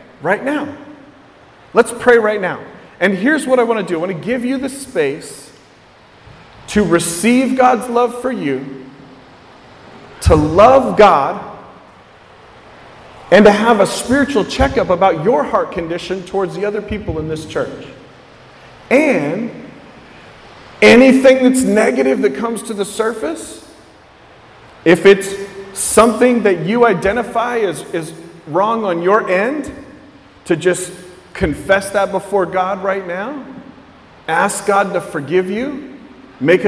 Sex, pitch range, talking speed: male, 175-240 Hz, 135 wpm